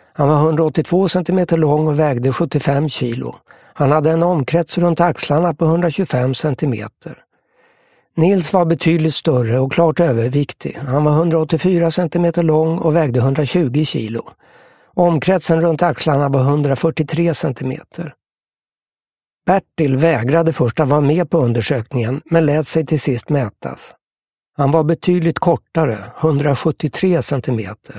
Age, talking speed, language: 60-79, 125 wpm, English